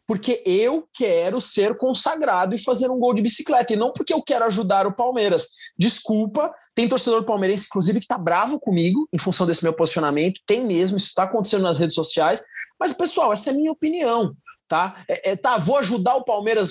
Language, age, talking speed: Portuguese, 20-39, 200 wpm